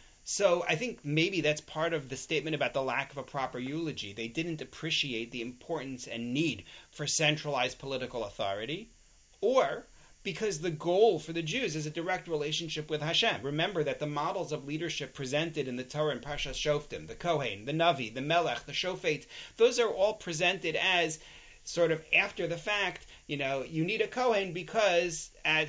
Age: 30-49